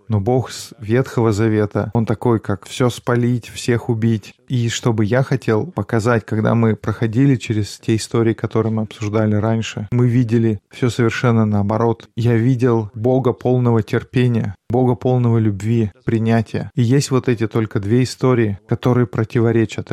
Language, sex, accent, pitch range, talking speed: Russian, male, native, 110-125 Hz, 150 wpm